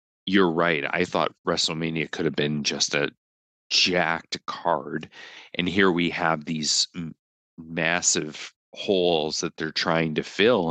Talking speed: 135 wpm